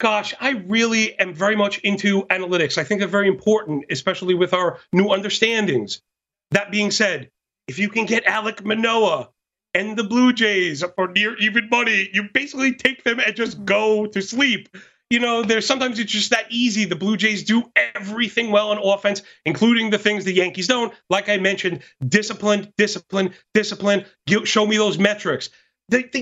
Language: English